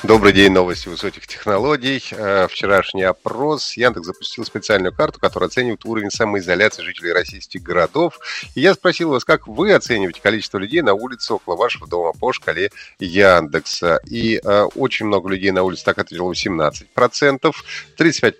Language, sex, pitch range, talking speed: Russian, male, 100-160 Hz, 150 wpm